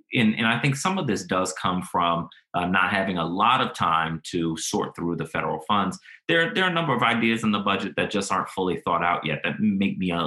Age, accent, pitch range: 30-49, American, 95-130 Hz